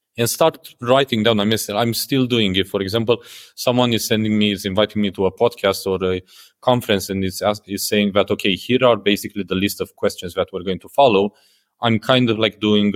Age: 30-49